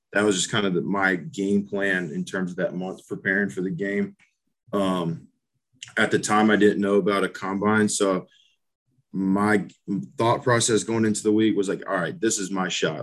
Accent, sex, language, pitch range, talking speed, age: American, male, English, 95-110 Hz, 200 wpm, 20-39